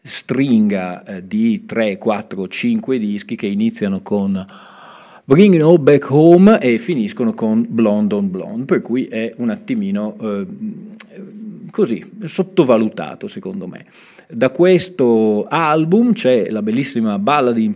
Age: 40-59